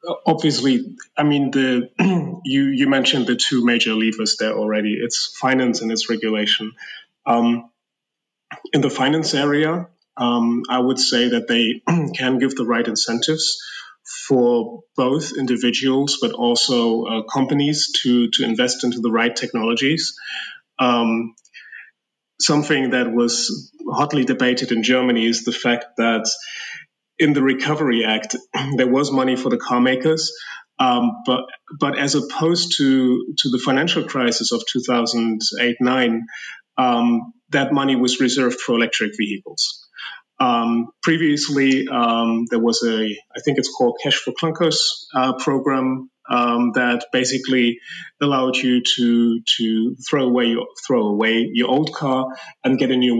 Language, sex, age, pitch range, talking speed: English, male, 30-49, 115-140 Hz, 140 wpm